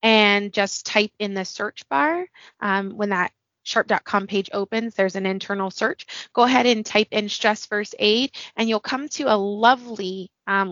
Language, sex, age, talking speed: English, female, 20-39, 180 wpm